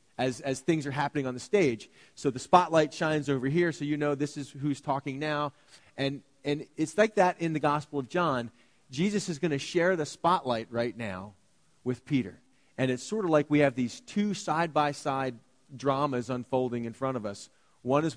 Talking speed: 200 wpm